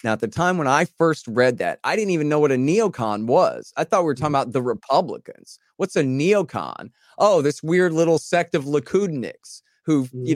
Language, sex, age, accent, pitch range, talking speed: English, male, 30-49, American, 110-155 Hz, 215 wpm